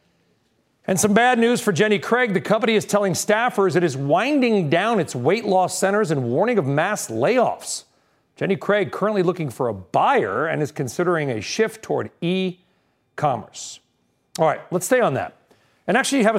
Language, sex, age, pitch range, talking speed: English, male, 40-59, 170-215 Hz, 175 wpm